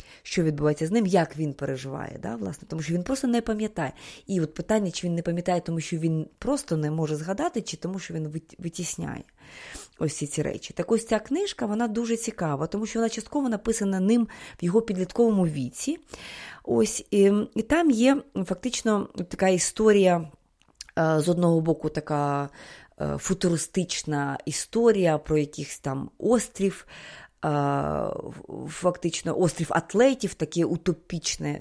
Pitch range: 160-225 Hz